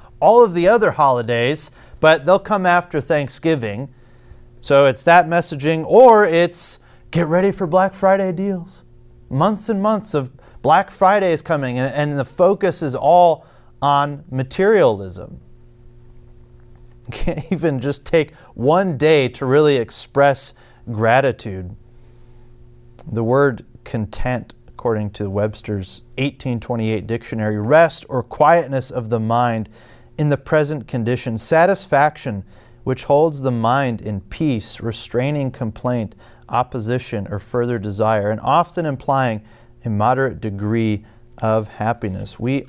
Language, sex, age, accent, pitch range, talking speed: English, male, 30-49, American, 115-145 Hz, 125 wpm